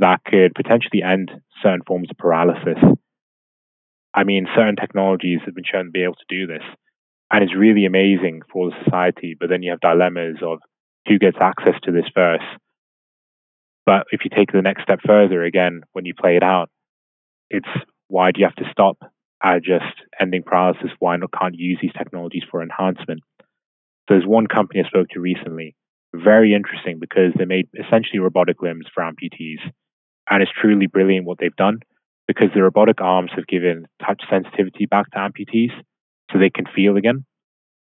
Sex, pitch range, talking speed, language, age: male, 90-100 Hz, 180 wpm, English, 20-39